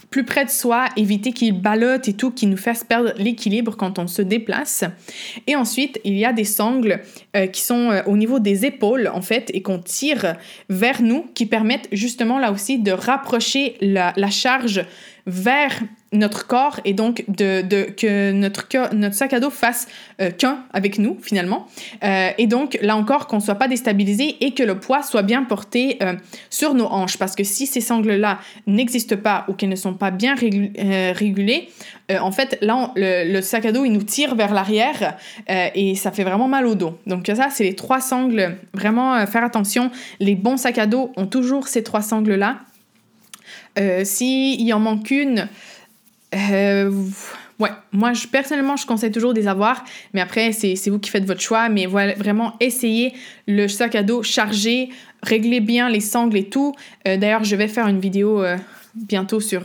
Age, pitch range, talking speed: 20-39, 200-245 Hz, 205 wpm